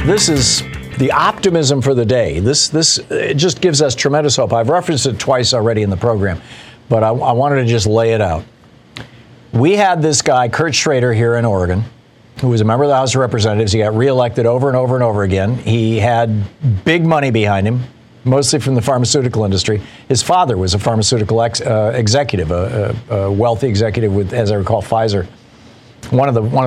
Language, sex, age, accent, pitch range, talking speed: English, male, 50-69, American, 115-140 Hz, 205 wpm